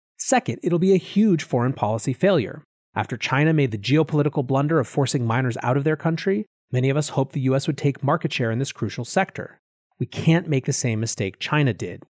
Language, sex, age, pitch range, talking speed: English, male, 30-49, 125-165 Hz, 215 wpm